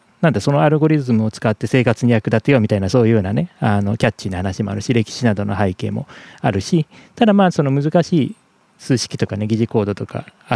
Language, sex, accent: Japanese, male, native